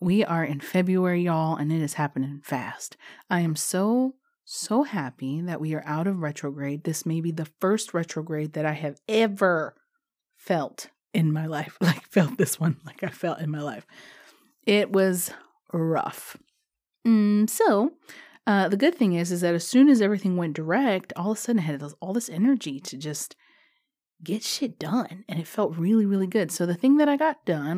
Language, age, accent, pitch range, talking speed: English, 30-49, American, 165-230 Hz, 190 wpm